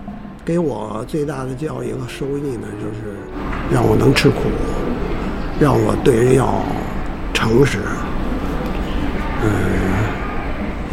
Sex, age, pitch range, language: male, 60-79, 105-160 Hz, Chinese